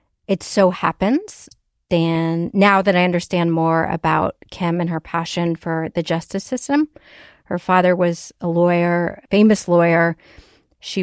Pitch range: 170-205 Hz